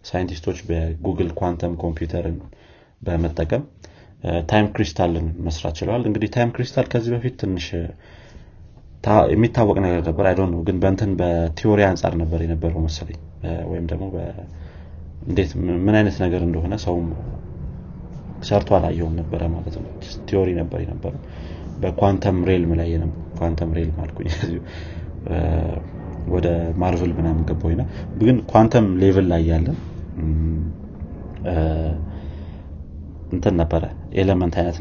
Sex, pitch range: male, 80-95 Hz